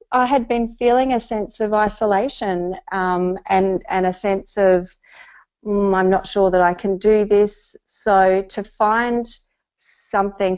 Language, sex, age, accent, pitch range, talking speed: English, female, 30-49, Australian, 175-200 Hz, 155 wpm